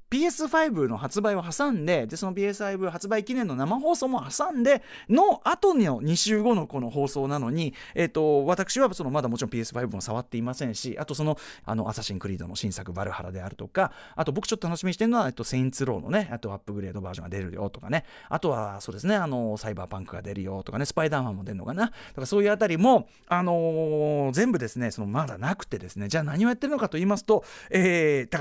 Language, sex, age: Japanese, male, 40-59